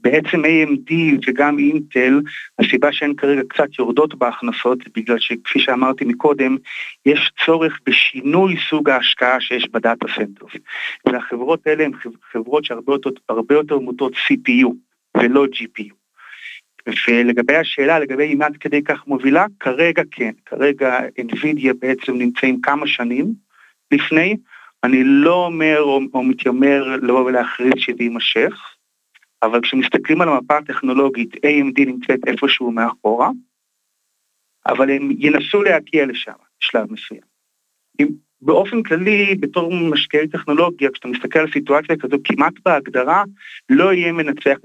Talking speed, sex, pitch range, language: 120 wpm, male, 125-155 Hz, Hebrew